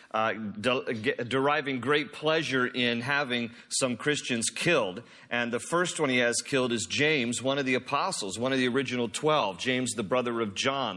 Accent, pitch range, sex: American, 120-150 Hz, male